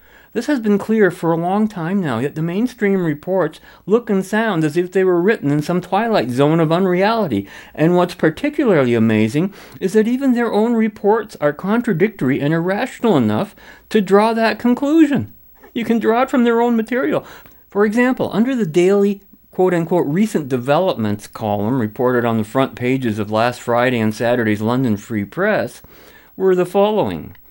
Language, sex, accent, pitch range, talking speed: English, male, American, 125-200 Hz, 170 wpm